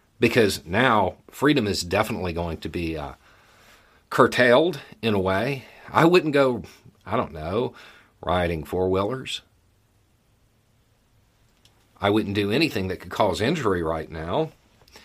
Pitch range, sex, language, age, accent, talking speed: 95-115 Hz, male, English, 50-69, American, 125 wpm